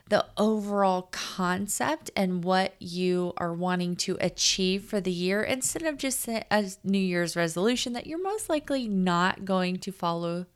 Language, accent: English, American